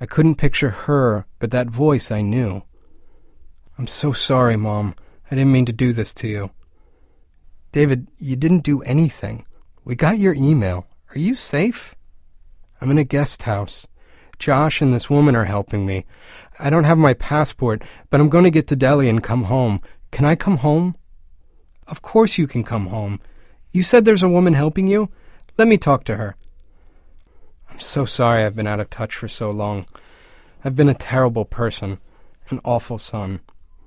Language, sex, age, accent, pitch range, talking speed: English, male, 30-49, American, 100-150 Hz, 175 wpm